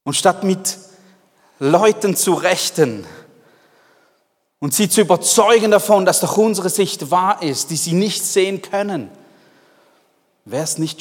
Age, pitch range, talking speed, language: 40-59, 125-165 Hz, 135 wpm, German